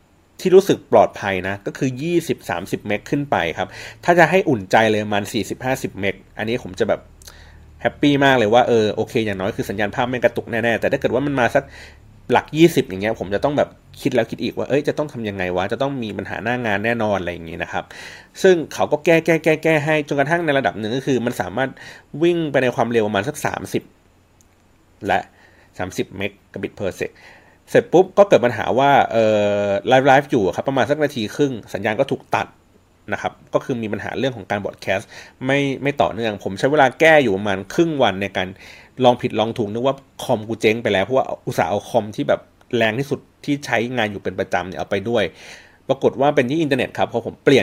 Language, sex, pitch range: Thai, male, 100-135 Hz